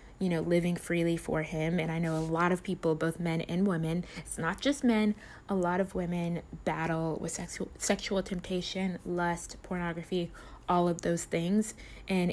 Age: 20-39